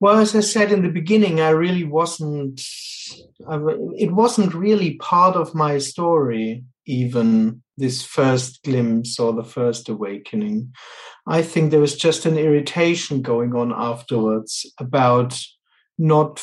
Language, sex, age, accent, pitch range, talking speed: English, male, 50-69, German, 120-155 Hz, 135 wpm